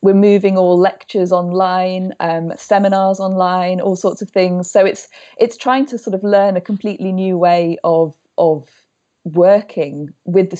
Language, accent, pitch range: English, British, 165-200 Hz